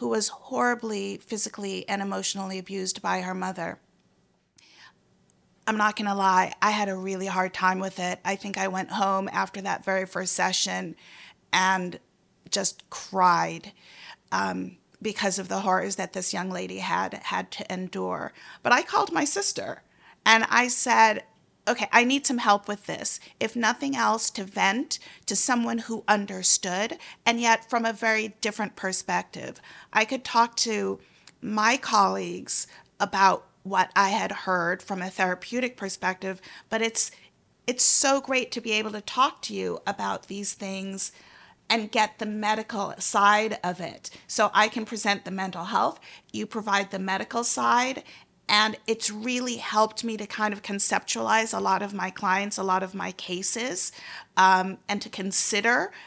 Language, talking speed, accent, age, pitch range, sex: English, 165 wpm, American, 40-59, 190-230 Hz, female